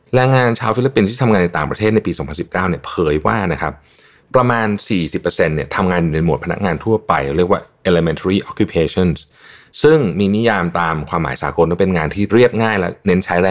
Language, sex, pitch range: Thai, male, 75-105 Hz